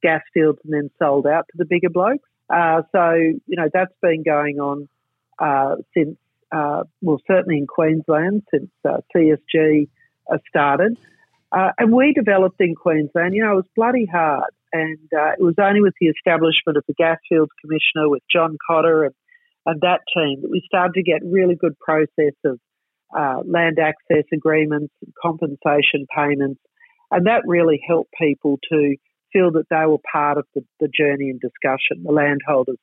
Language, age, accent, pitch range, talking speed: English, 50-69, Australian, 150-190 Hz, 175 wpm